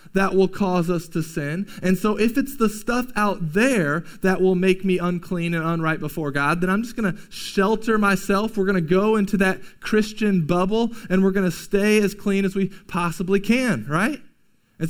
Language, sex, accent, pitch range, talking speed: English, male, American, 160-210 Hz, 205 wpm